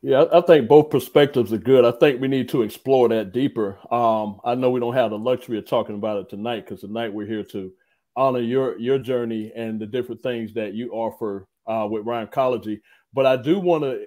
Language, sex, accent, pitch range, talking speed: English, male, American, 115-155 Hz, 225 wpm